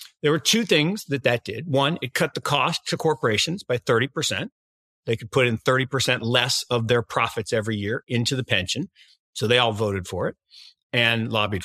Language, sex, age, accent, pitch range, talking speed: English, male, 50-69, American, 115-155 Hz, 195 wpm